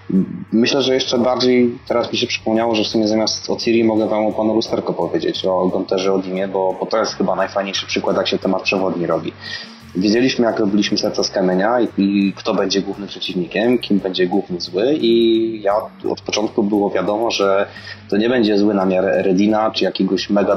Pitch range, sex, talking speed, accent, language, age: 95-115 Hz, male, 200 wpm, native, Polish, 30-49